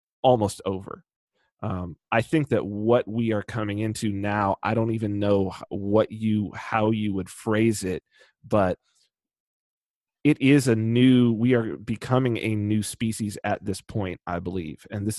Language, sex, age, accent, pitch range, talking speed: English, male, 30-49, American, 100-125 Hz, 160 wpm